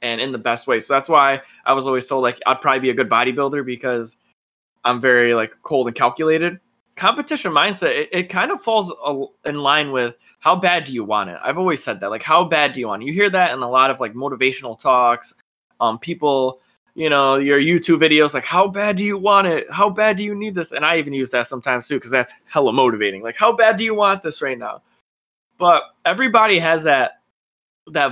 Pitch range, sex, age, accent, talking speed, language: 130-180 Hz, male, 20-39, American, 230 wpm, English